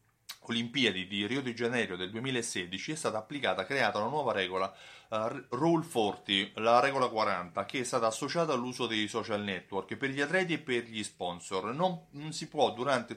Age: 30-49